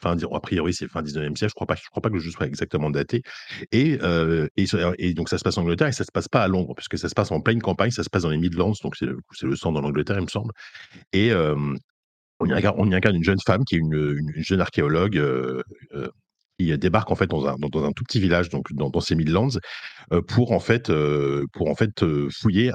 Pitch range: 75-100 Hz